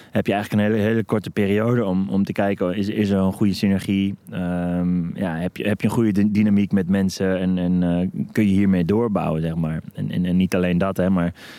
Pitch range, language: 95-110 Hz, Dutch